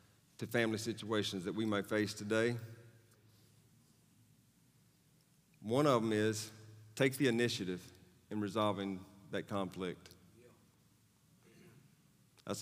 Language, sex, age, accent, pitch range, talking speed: English, male, 40-59, American, 105-130 Hz, 95 wpm